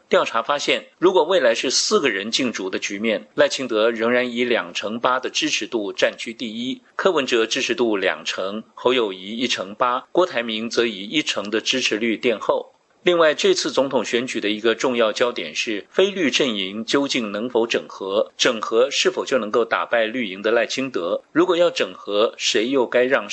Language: Chinese